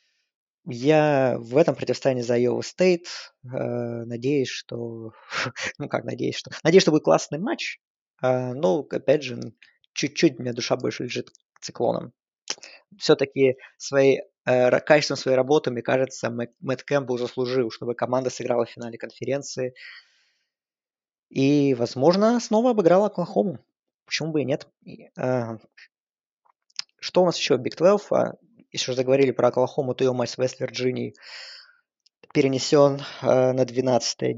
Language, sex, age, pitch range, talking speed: Russian, male, 20-39, 125-155 Hz, 130 wpm